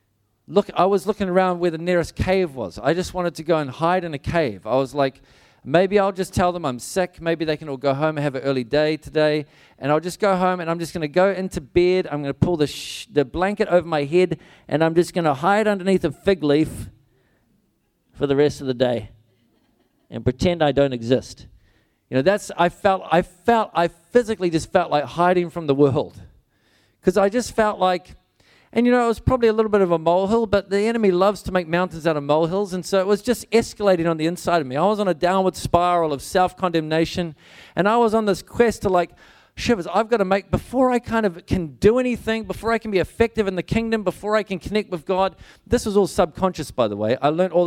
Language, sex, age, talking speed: English, male, 40-59, 245 wpm